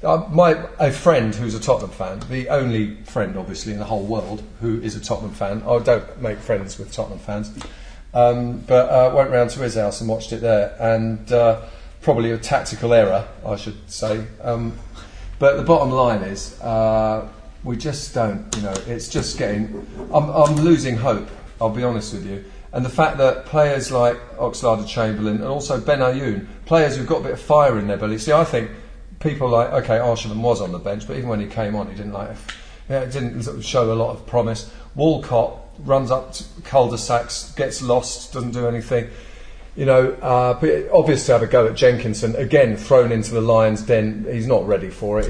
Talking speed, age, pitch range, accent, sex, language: 205 wpm, 40-59, 110-130 Hz, British, male, English